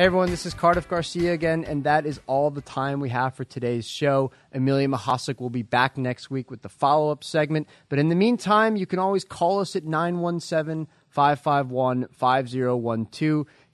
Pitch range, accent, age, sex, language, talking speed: 125-160 Hz, American, 30-49, male, English, 175 wpm